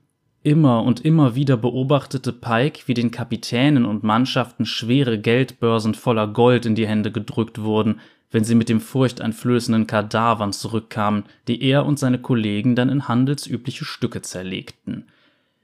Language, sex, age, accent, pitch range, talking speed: German, male, 20-39, German, 115-130 Hz, 140 wpm